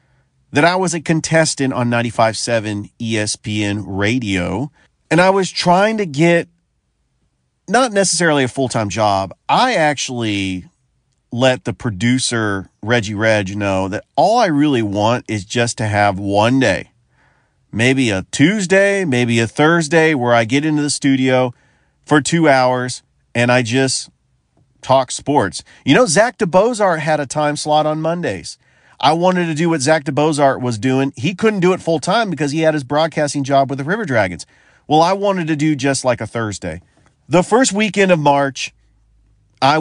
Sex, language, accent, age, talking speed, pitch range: male, English, American, 40-59, 165 wpm, 115-155 Hz